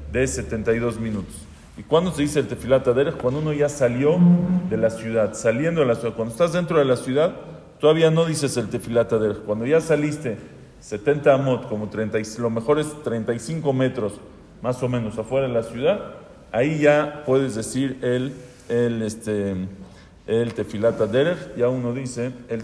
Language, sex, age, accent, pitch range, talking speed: English, male, 40-59, Mexican, 105-130 Hz, 175 wpm